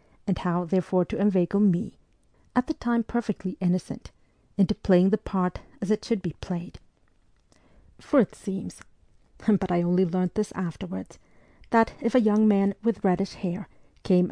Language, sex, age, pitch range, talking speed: English, female, 40-59, 180-205 Hz, 160 wpm